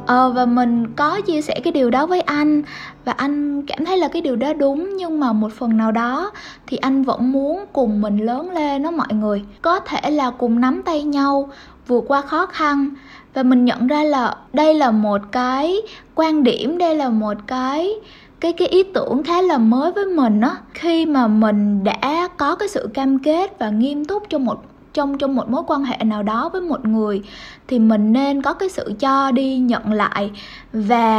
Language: Vietnamese